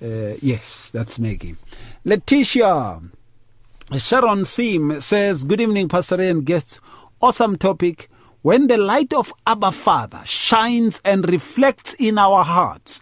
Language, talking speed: English, 130 wpm